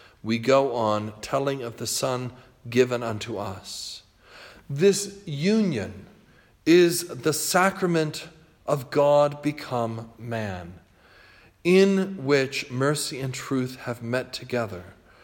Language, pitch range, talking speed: English, 100-170 Hz, 105 wpm